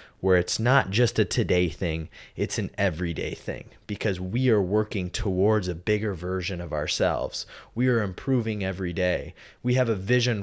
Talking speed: 175 wpm